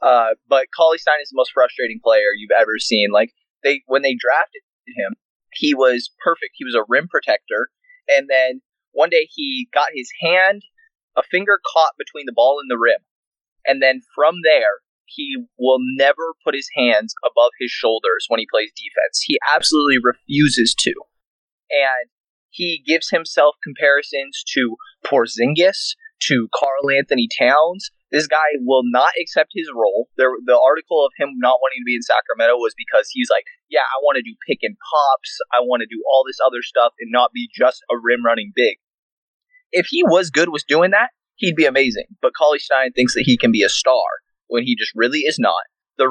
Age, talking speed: 20-39, 190 wpm